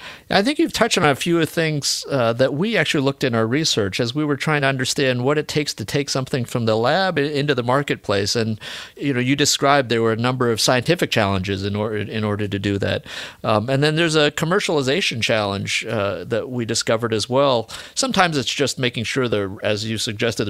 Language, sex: English, male